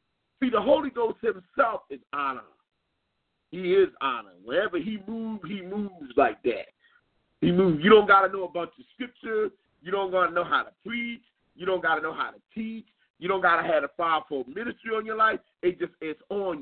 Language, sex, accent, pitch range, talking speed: English, male, American, 180-280 Hz, 215 wpm